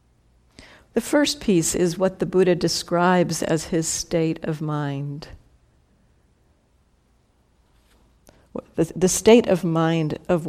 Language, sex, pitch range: English, female, 155-190 Hz